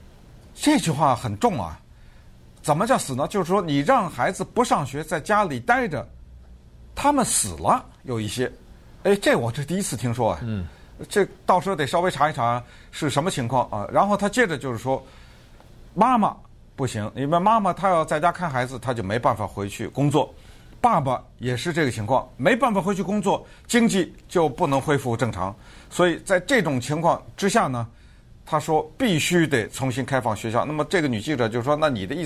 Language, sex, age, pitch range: Chinese, male, 50-69, 115-170 Hz